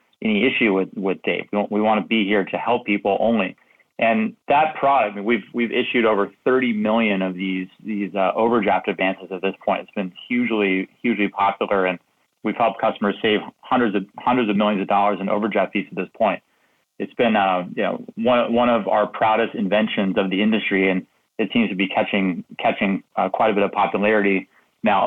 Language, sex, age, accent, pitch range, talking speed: English, male, 30-49, American, 100-125 Hz, 205 wpm